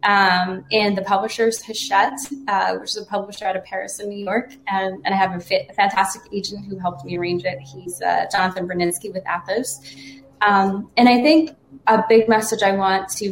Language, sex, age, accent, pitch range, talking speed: English, female, 20-39, American, 140-230 Hz, 205 wpm